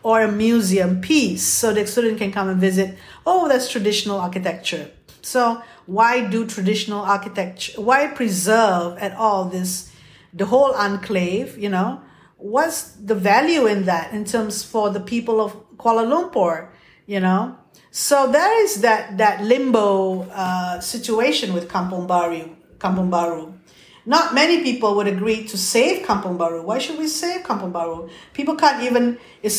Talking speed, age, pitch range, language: 155 wpm, 50-69, 195-250 Hz, English